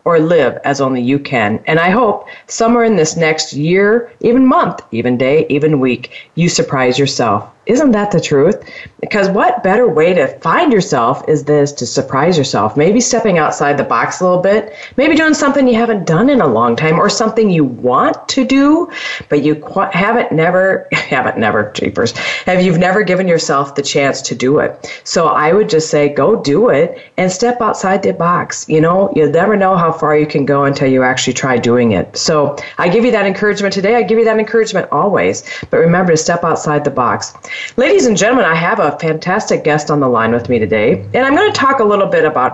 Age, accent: 40-59, American